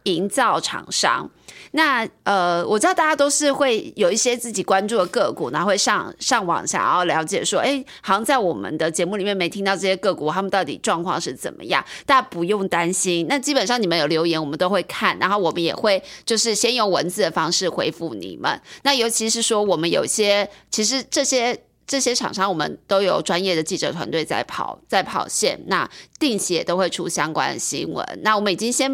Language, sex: Chinese, female